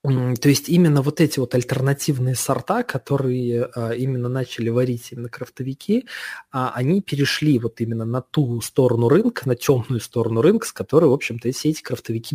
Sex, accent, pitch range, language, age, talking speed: male, native, 120-150 Hz, Russian, 20-39, 160 wpm